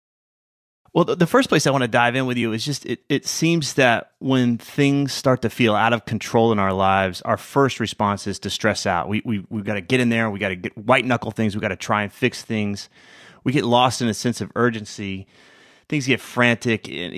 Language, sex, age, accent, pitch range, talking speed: English, male, 30-49, American, 105-130 Hz, 250 wpm